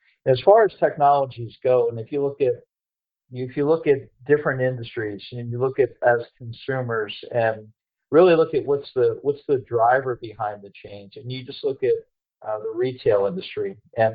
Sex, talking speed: male, 185 wpm